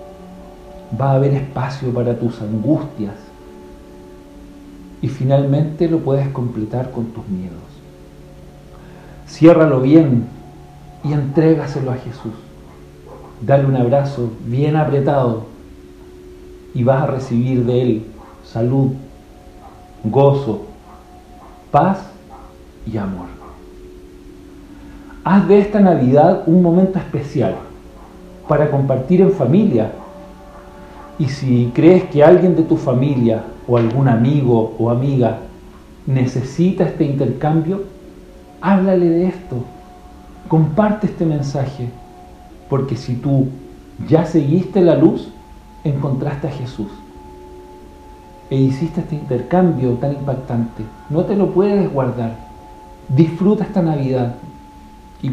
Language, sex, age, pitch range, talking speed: Spanish, male, 50-69, 105-155 Hz, 105 wpm